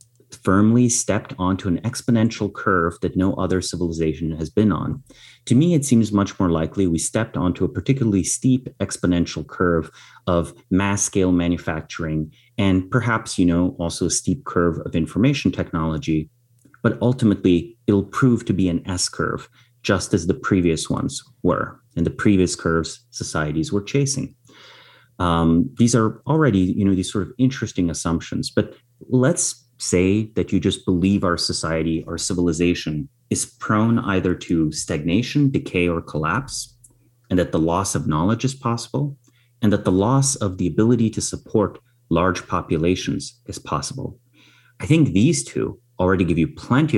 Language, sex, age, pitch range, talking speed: English, male, 30-49, 85-120 Hz, 155 wpm